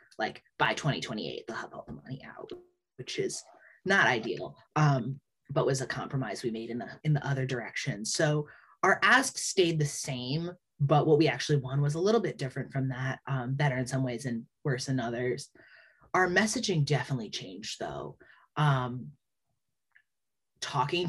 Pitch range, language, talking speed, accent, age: 130-165 Hz, English, 170 wpm, American, 30-49